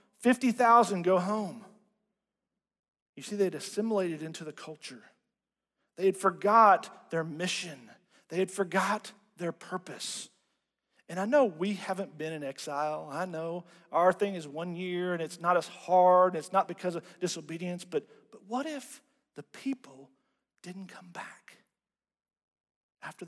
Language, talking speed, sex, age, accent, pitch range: English, 145 wpm, male, 40-59, American, 155-210 Hz